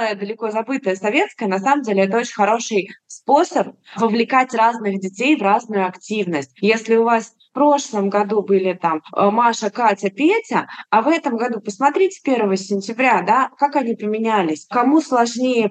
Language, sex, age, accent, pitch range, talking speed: Russian, female, 20-39, native, 205-265 Hz, 155 wpm